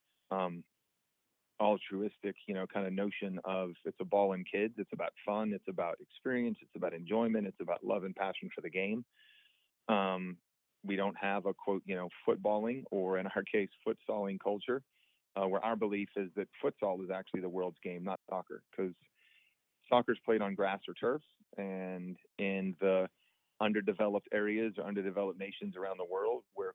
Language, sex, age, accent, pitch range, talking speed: English, male, 30-49, American, 95-105 Hz, 175 wpm